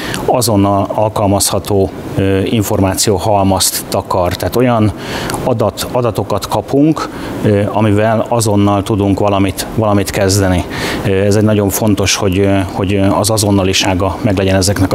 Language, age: Hungarian, 30-49